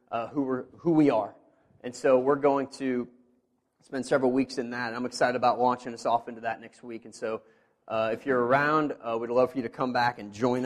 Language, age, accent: English, 30-49, American